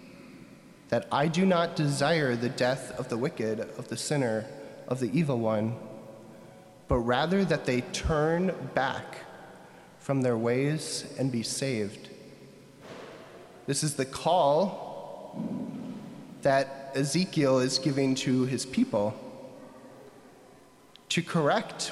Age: 20-39